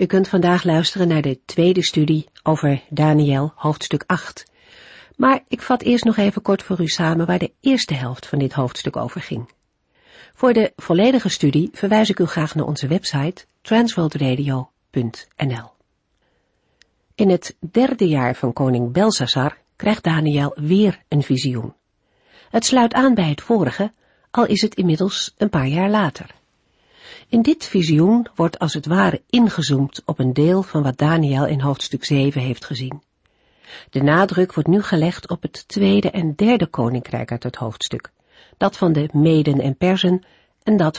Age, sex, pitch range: 50-69, female, 140-200 Hz